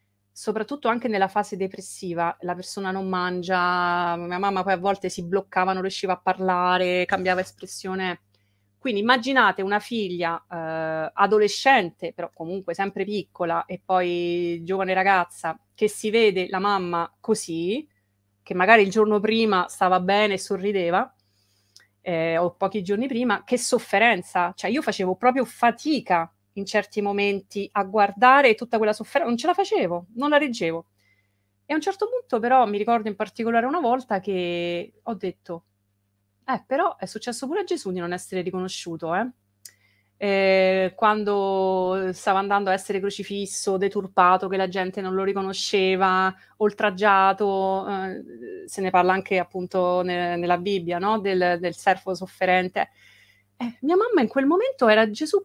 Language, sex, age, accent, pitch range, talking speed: Italian, female, 30-49, native, 175-215 Hz, 155 wpm